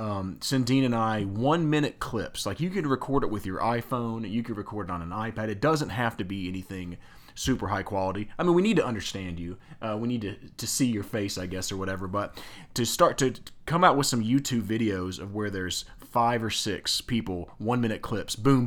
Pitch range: 95-125 Hz